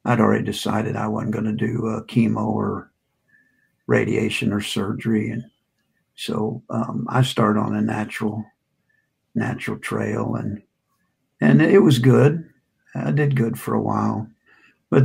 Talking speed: 145 wpm